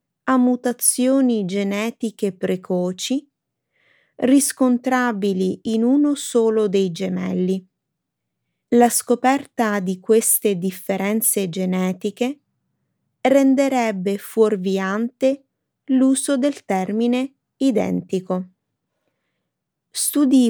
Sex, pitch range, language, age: female, 190-250 Hz, Italian, 30-49